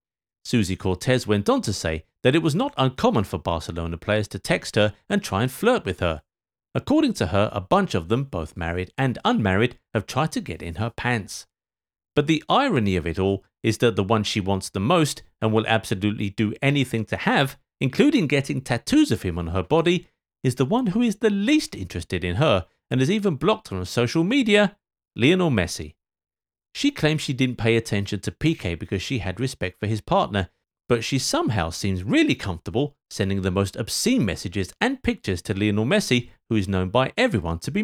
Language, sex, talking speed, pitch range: English, male, 200 wpm, 95-155 Hz